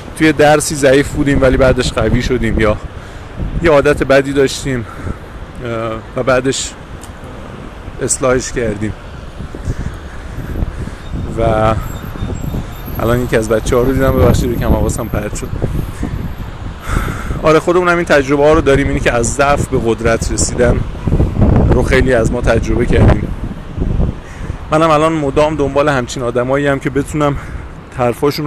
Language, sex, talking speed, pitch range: Persian, male, 130 wpm, 110-135 Hz